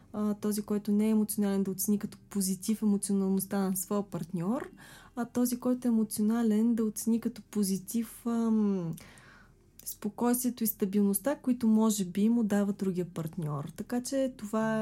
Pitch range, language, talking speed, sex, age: 195-245 Hz, Bulgarian, 140 wpm, female, 20-39